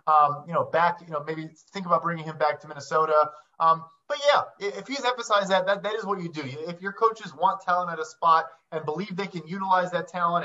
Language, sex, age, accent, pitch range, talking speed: English, male, 20-39, American, 160-195 Hz, 240 wpm